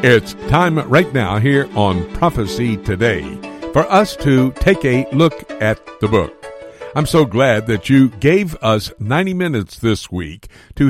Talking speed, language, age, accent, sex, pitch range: 160 wpm, English, 60-79, American, male, 105-140 Hz